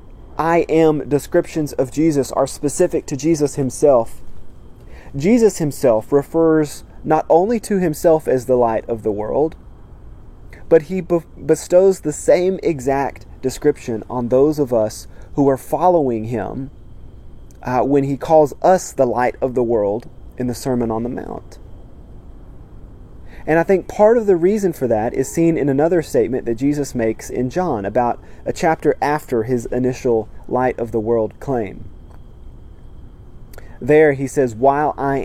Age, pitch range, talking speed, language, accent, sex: 30-49, 115-155 Hz, 150 wpm, English, American, male